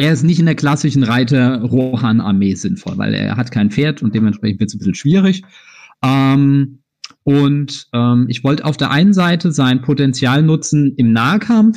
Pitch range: 120-175 Hz